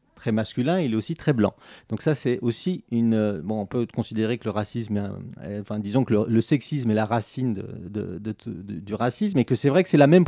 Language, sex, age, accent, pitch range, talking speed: French, male, 40-59, French, 110-135 Hz, 250 wpm